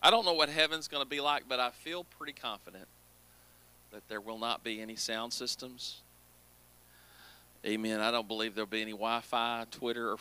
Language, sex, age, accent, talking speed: English, male, 40-59, American, 195 wpm